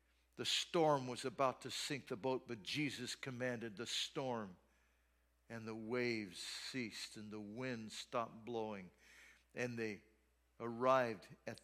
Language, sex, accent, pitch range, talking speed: English, male, American, 125-165 Hz, 135 wpm